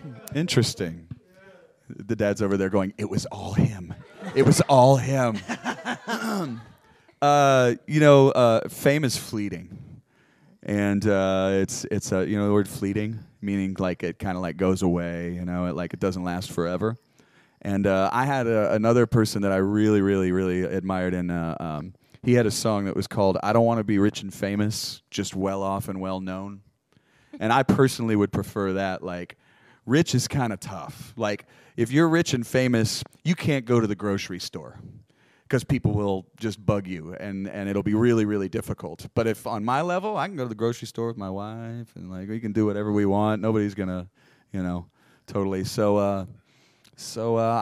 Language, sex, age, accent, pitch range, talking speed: English, male, 30-49, American, 95-120 Hz, 195 wpm